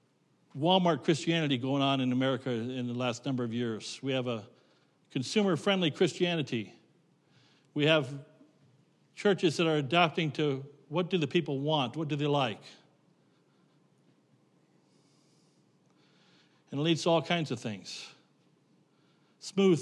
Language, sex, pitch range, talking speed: English, male, 125-160 Hz, 125 wpm